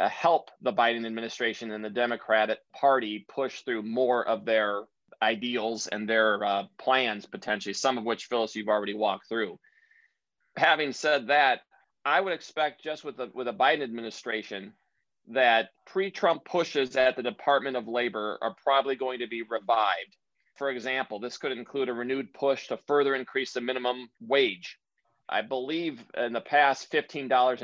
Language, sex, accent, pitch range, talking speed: English, male, American, 110-135 Hz, 160 wpm